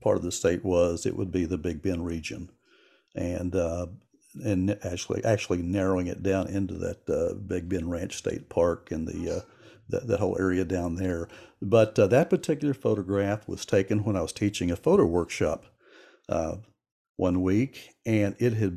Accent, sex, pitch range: American, male, 90-105 Hz